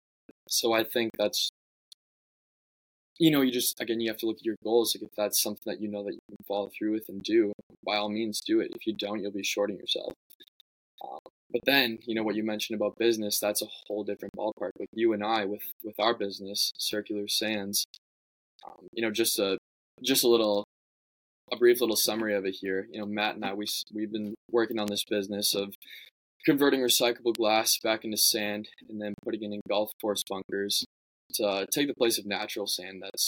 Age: 20-39